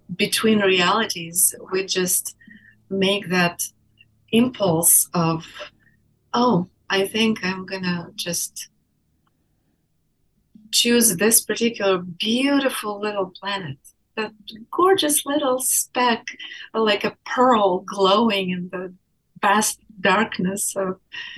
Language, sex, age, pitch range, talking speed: English, female, 30-49, 180-220 Hz, 95 wpm